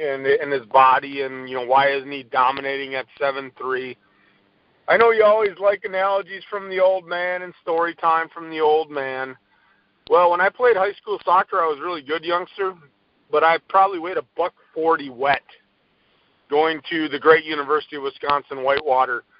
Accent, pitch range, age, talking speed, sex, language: American, 150-205 Hz, 40-59, 180 wpm, male, English